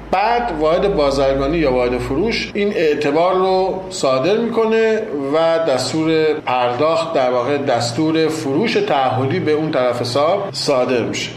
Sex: male